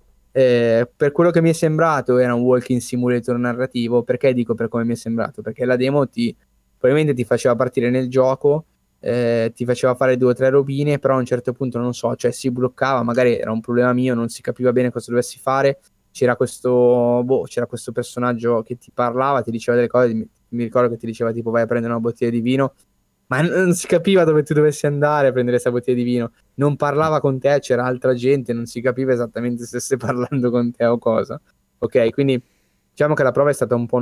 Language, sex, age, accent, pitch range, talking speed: Italian, male, 10-29, native, 115-130 Hz, 225 wpm